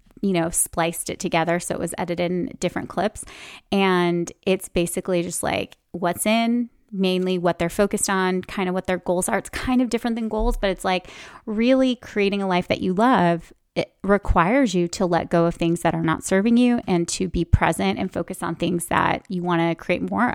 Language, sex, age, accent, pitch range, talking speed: English, female, 20-39, American, 175-215 Hz, 215 wpm